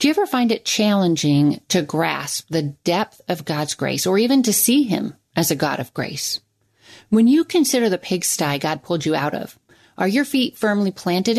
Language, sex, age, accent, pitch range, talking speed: English, female, 40-59, American, 150-210 Hz, 200 wpm